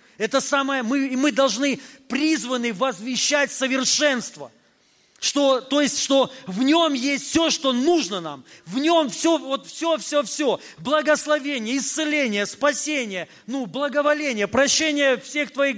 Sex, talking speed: male, 130 wpm